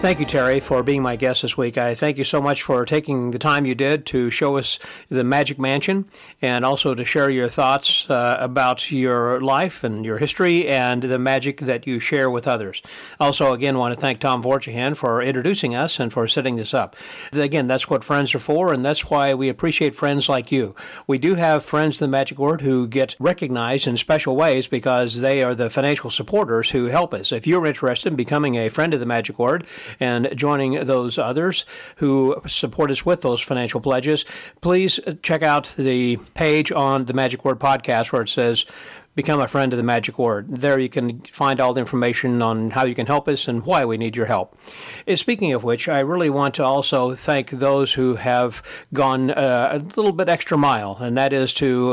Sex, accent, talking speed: male, American, 210 wpm